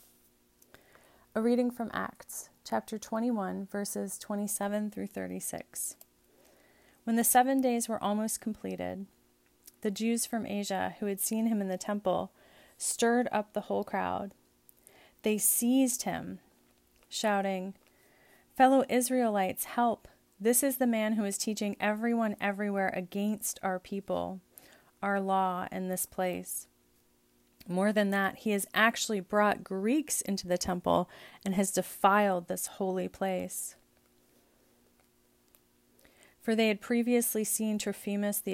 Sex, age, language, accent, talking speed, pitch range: female, 30-49, English, American, 125 wpm, 155-210 Hz